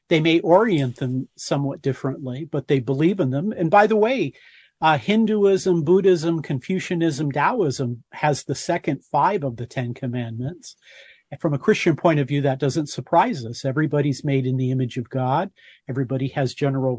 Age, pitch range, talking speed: 50-69, 135-175 Hz, 175 wpm